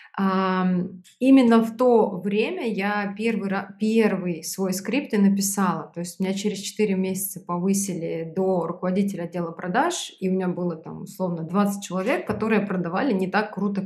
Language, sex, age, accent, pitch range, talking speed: Russian, female, 20-39, native, 185-220 Hz, 150 wpm